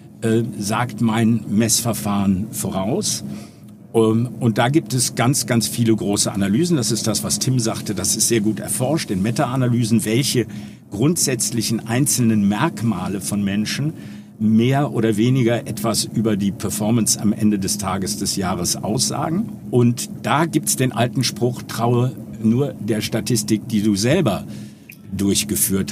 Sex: male